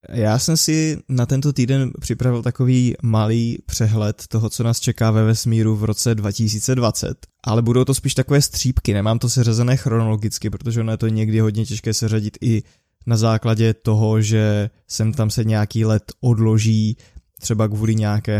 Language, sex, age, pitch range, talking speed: Czech, male, 20-39, 110-125 Hz, 165 wpm